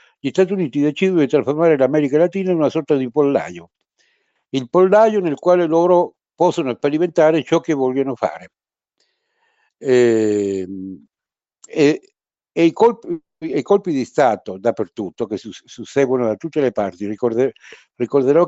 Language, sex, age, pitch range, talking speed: Italian, male, 60-79, 105-155 Hz, 140 wpm